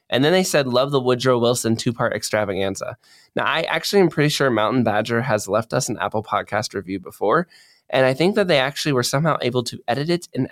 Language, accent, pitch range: English, American, 105-130 Hz